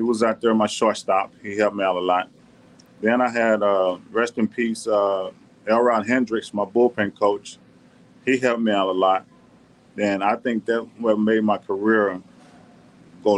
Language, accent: English, American